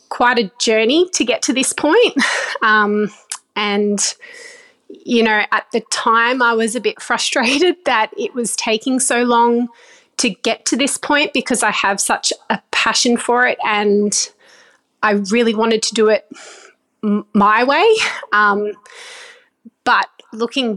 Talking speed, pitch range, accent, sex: 145 wpm, 210-280 Hz, Australian, female